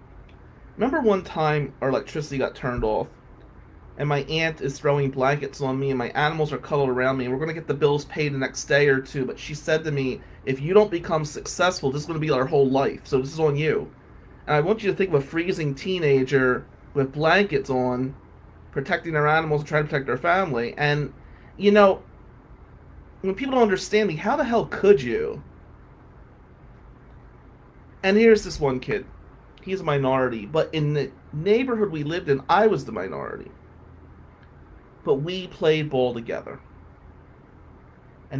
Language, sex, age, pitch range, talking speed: English, male, 30-49, 125-155 Hz, 185 wpm